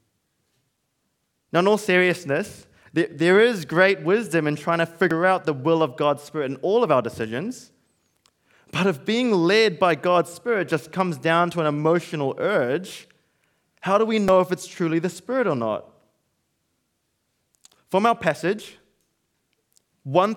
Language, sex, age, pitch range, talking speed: English, male, 20-39, 155-195 Hz, 155 wpm